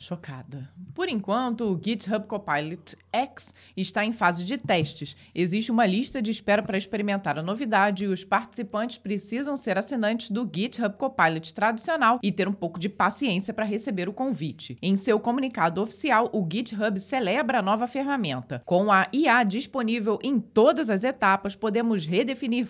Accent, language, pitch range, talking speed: Brazilian, Portuguese, 185-235 Hz, 160 wpm